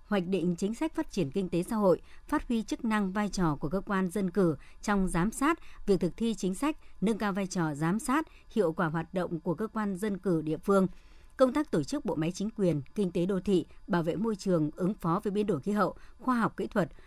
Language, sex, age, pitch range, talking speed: Vietnamese, male, 60-79, 170-215 Hz, 255 wpm